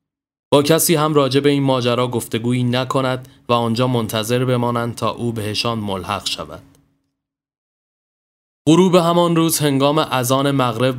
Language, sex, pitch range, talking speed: Persian, male, 115-140 Hz, 125 wpm